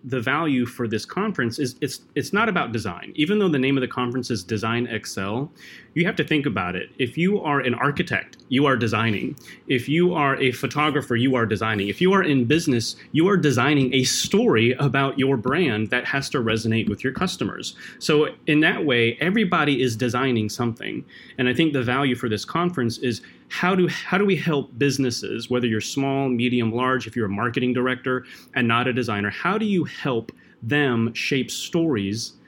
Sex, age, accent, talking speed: male, 30-49, American, 200 wpm